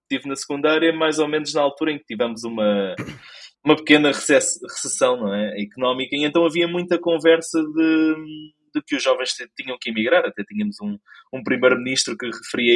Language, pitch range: Portuguese, 130-185 Hz